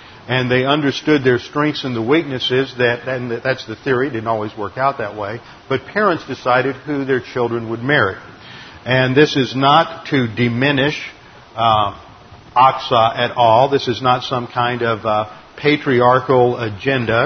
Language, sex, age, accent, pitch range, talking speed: English, male, 50-69, American, 120-140 Hz, 160 wpm